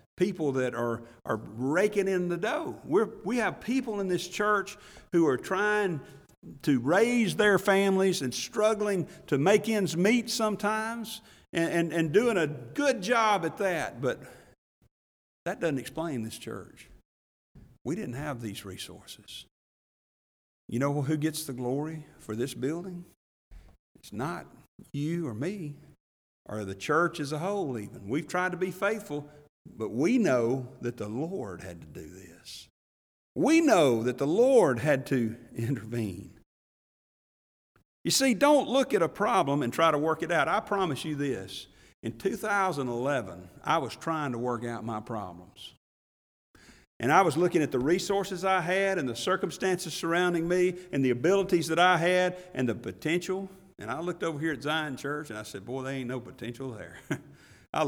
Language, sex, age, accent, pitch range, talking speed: English, male, 50-69, American, 120-190 Hz, 165 wpm